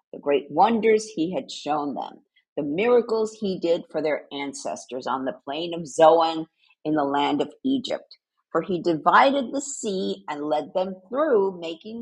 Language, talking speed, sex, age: English, 170 wpm, female, 50-69